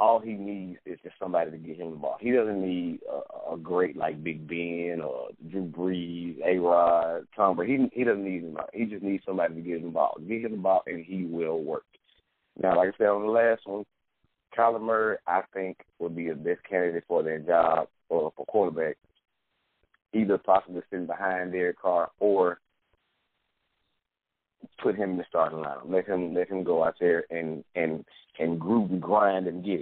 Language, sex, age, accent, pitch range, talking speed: English, male, 30-49, American, 85-95 Hz, 200 wpm